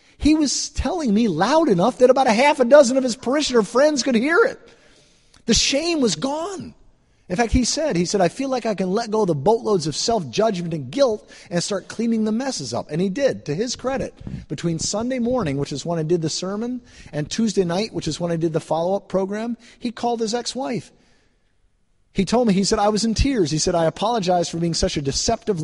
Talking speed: 230 wpm